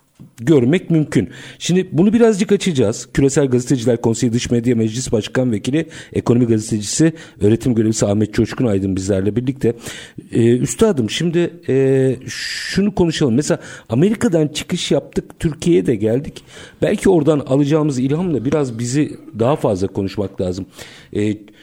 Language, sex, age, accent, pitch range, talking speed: Turkish, male, 50-69, native, 105-140 Hz, 130 wpm